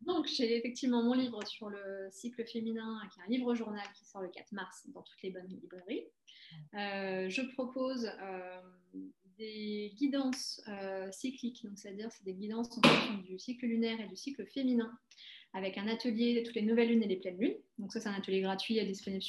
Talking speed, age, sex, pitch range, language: 205 wpm, 20-39, female, 190-230 Hz, French